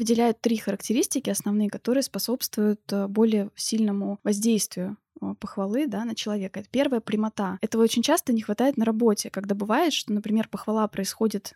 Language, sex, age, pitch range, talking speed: Russian, female, 20-39, 205-235 Hz, 150 wpm